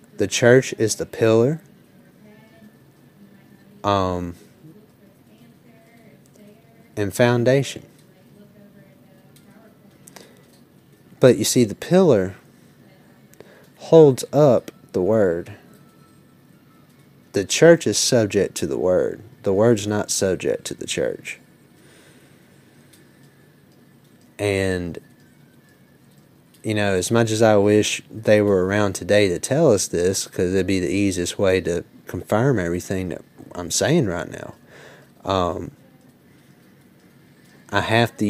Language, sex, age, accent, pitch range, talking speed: English, male, 30-49, American, 95-115 Hz, 105 wpm